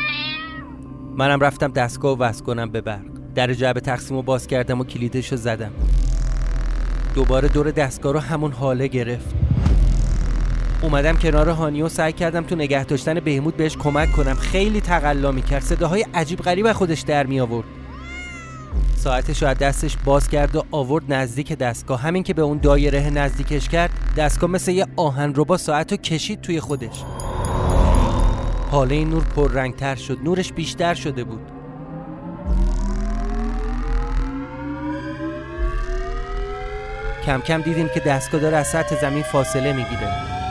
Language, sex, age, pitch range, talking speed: Persian, male, 30-49, 110-160 Hz, 145 wpm